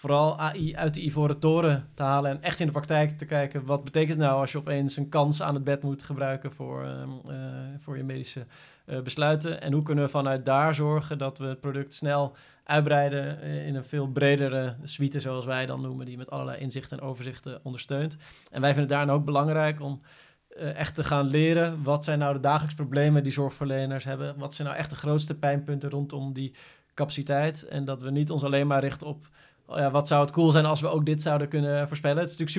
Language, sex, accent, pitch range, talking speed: Dutch, male, Dutch, 140-155 Hz, 225 wpm